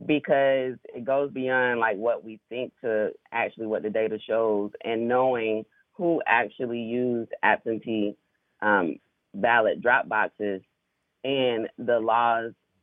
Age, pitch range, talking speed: 20-39, 115-140 Hz, 125 wpm